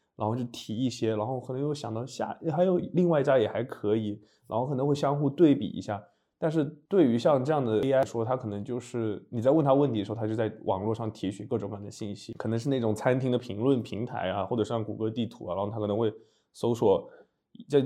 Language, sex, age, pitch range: Chinese, male, 20-39, 110-140 Hz